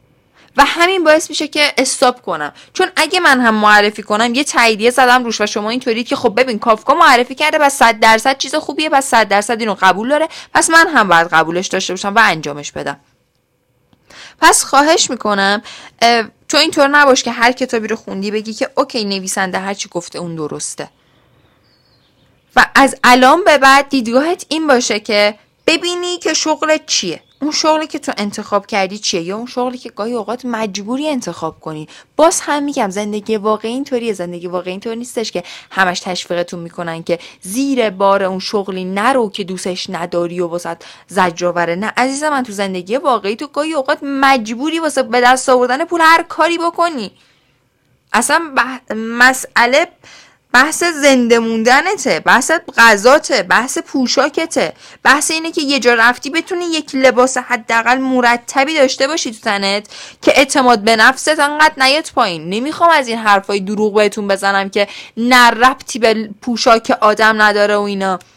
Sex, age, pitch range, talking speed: female, 10-29, 200-280 Hz, 165 wpm